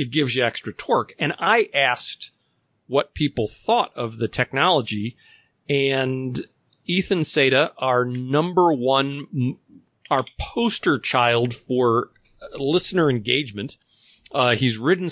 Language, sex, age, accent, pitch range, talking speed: English, male, 40-59, American, 120-150 Hz, 115 wpm